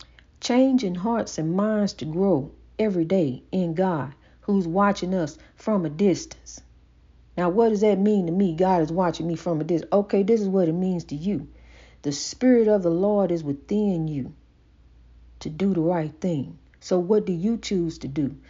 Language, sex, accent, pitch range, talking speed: English, female, American, 165-240 Hz, 190 wpm